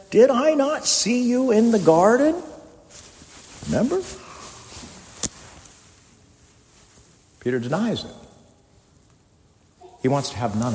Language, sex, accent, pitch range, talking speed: English, male, American, 115-185 Hz, 95 wpm